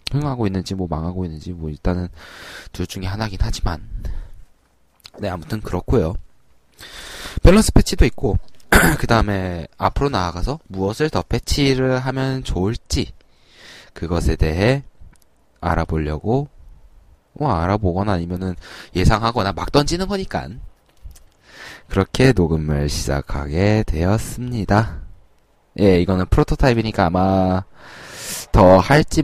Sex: male